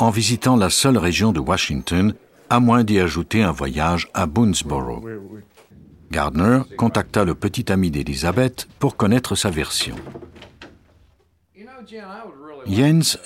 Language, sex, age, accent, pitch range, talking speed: French, male, 60-79, French, 90-125 Hz, 120 wpm